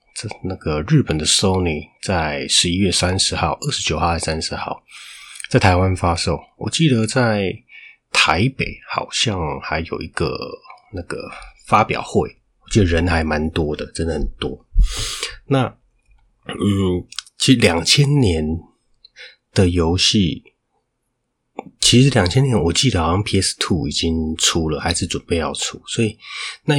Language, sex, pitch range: Chinese, male, 85-110 Hz